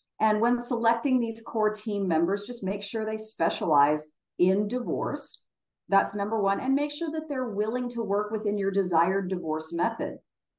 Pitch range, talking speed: 165-215 Hz, 170 wpm